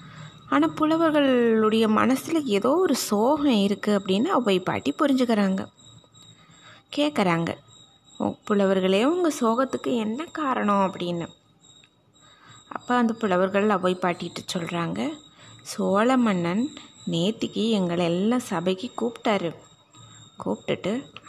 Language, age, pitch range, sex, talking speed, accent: Tamil, 20-39, 180-235 Hz, female, 90 wpm, native